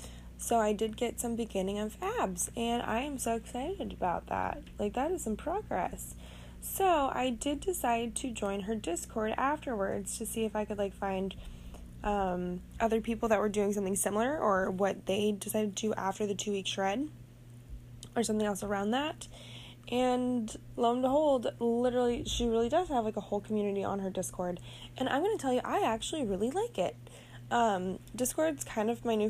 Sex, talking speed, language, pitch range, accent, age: female, 190 wpm, English, 185-235 Hz, American, 10-29